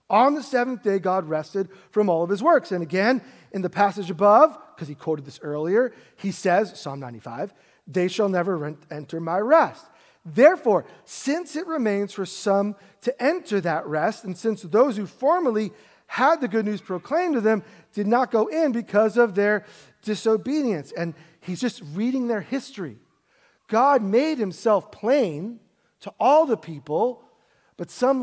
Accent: American